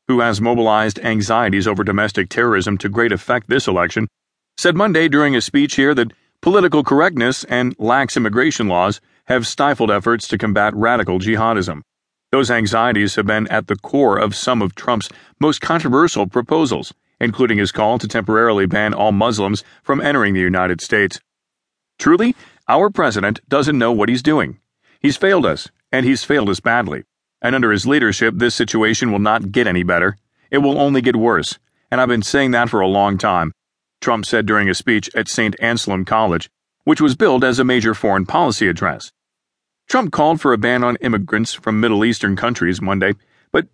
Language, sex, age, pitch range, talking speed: English, male, 40-59, 105-130 Hz, 180 wpm